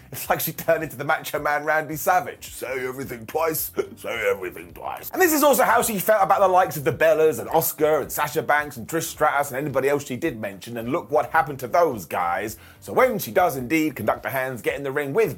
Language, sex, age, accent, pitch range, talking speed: English, male, 30-49, British, 145-215 Hz, 245 wpm